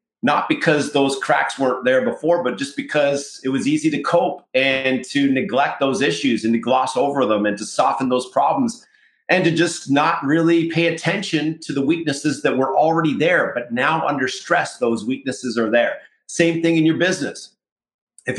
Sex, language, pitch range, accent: male, English, 130-165 Hz, American